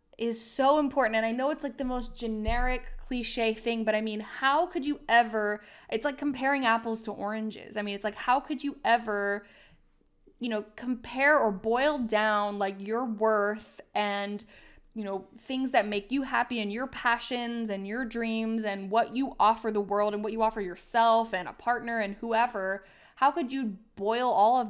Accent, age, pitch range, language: American, 20-39, 205-255 Hz, English